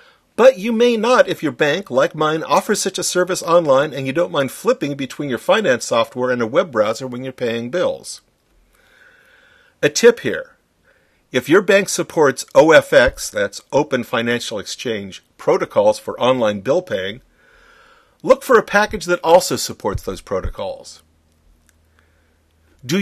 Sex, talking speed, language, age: male, 150 wpm, English, 50-69